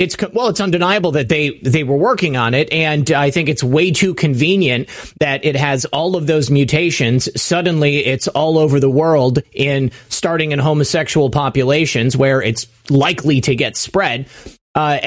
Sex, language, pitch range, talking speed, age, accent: male, English, 135-165 Hz, 170 wpm, 30-49, American